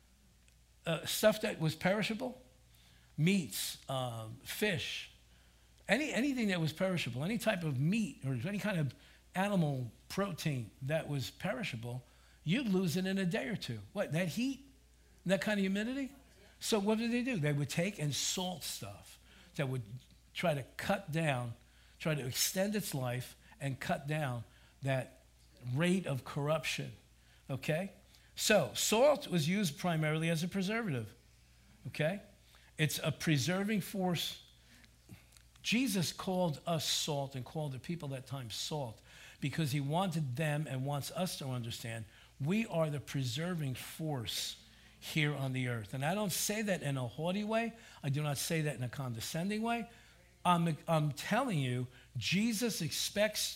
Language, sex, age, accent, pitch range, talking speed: English, male, 60-79, American, 125-190 Hz, 155 wpm